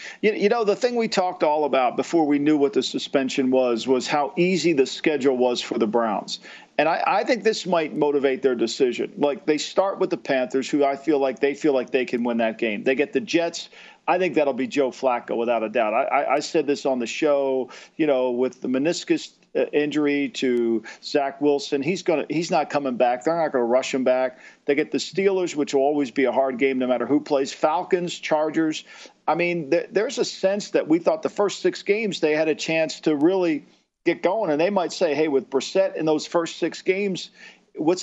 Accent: American